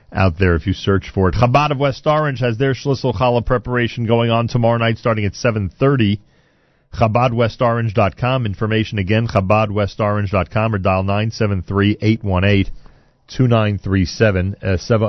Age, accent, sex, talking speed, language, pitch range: 40-59, American, male, 130 wpm, English, 105-140 Hz